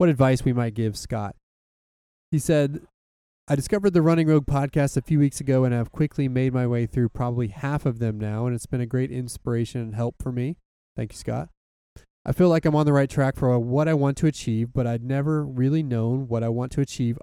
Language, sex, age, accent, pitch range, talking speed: English, male, 20-39, American, 120-145 Hz, 235 wpm